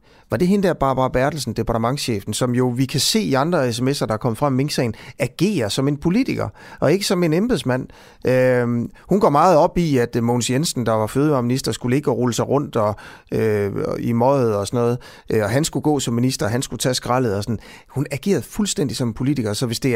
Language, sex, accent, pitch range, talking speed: Danish, male, native, 110-145 Hz, 225 wpm